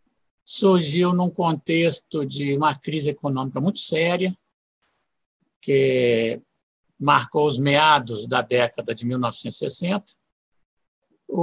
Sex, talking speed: male, 90 wpm